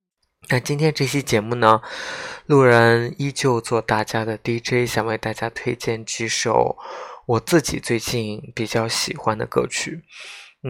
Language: Chinese